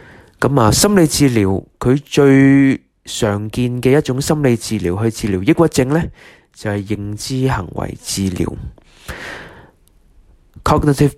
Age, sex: 20-39, male